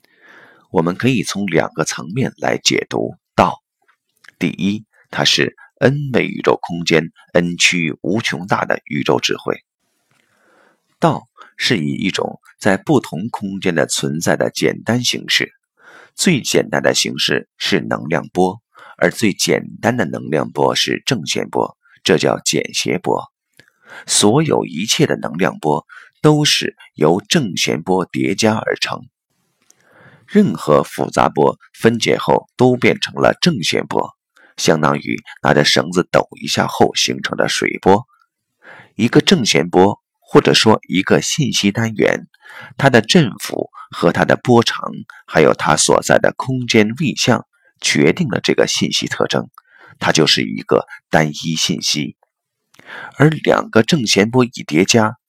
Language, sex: Chinese, male